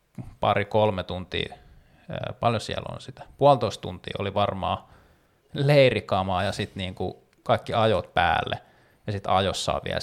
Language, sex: Finnish, male